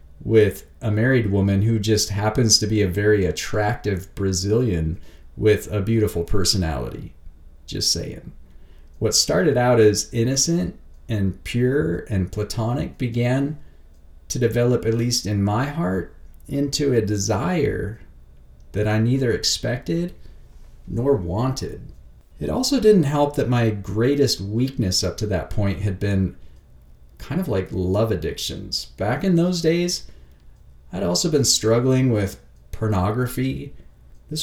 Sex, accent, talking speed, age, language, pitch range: male, American, 130 wpm, 40-59, English, 90-120 Hz